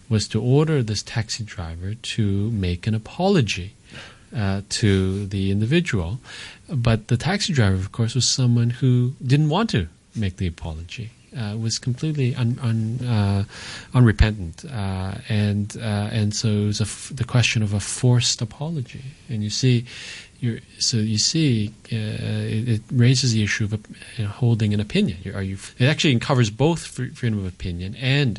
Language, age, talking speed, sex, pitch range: English, 40-59, 170 wpm, male, 100-125 Hz